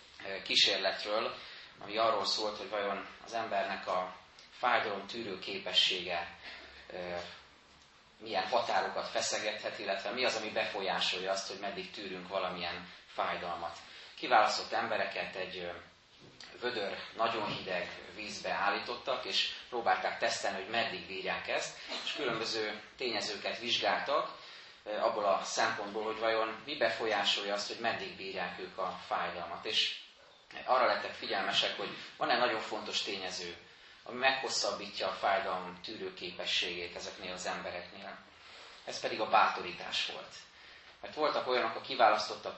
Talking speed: 125 wpm